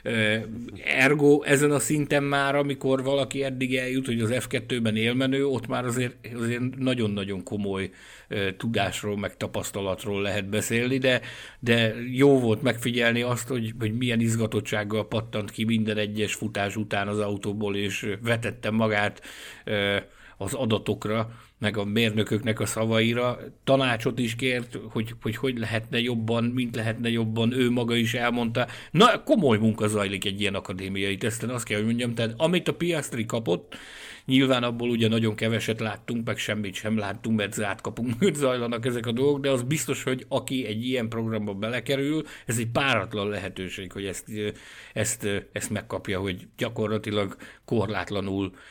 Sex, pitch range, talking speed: male, 105-125 Hz, 150 wpm